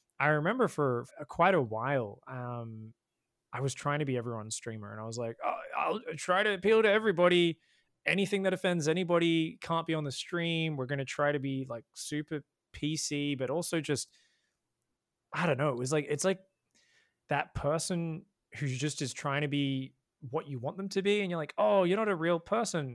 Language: English